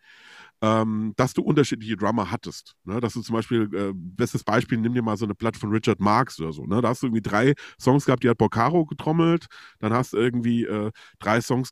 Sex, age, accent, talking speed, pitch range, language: male, 40-59, German, 225 wpm, 110-145 Hz, German